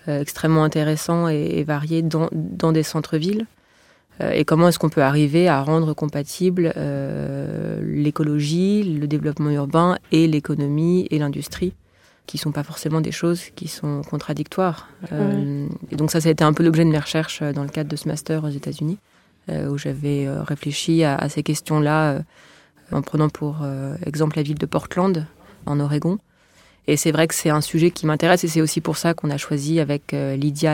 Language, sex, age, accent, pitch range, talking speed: French, female, 20-39, French, 145-165 Hz, 190 wpm